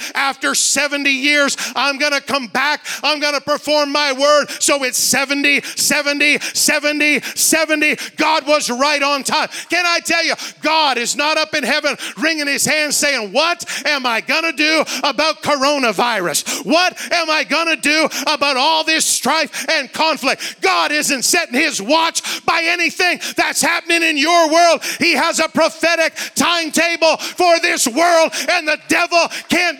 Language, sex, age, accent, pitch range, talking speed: English, male, 40-59, American, 265-335 Hz, 165 wpm